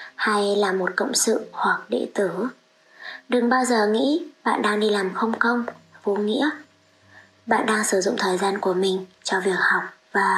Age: 20-39